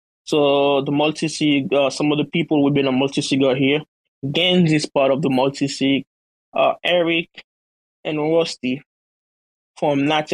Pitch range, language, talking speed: 140-160 Hz, English, 170 wpm